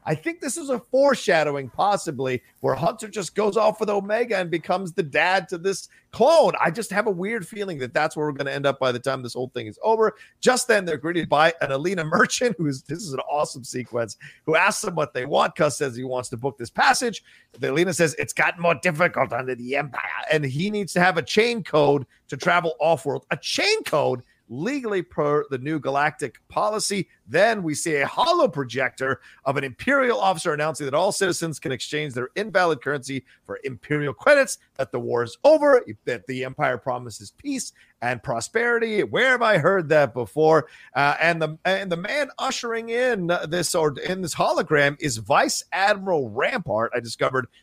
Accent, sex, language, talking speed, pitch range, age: American, male, English, 205 wpm, 135-205 Hz, 40-59